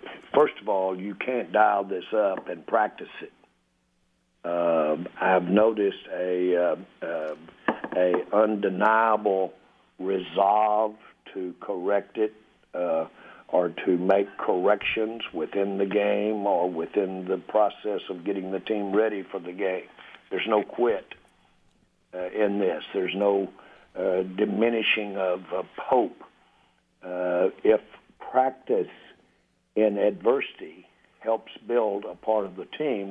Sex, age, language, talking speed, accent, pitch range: male, 60-79, English, 125 wpm, American, 90-105 Hz